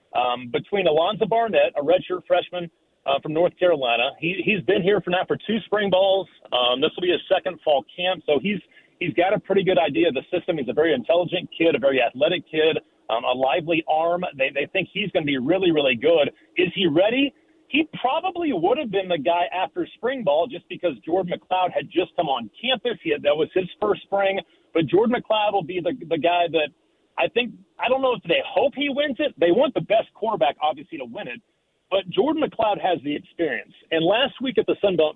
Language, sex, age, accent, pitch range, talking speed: English, male, 40-59, American, 165-225 Hz, 230 wpm